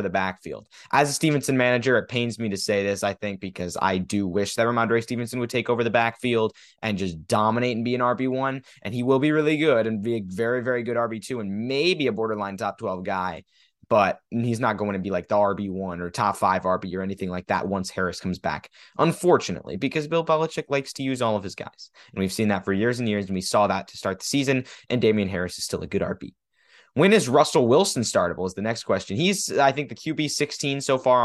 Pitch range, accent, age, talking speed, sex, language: 105-135 Hz, American, 20-39, 240 wpm, male, English